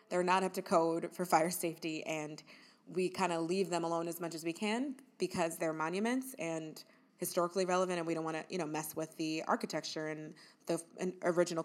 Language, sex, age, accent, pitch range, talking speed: English, female, 20-39, American, 165-200 Hz, 205 wpm